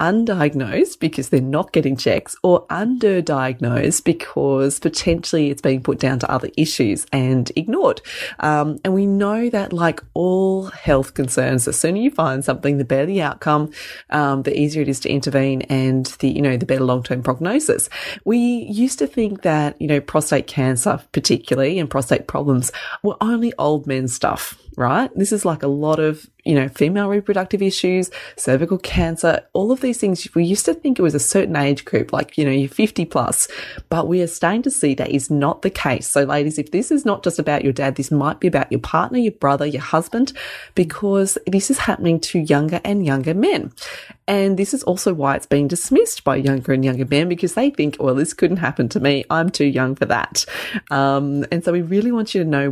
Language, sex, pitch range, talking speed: English, female, 140-195 Hz, 205 wpm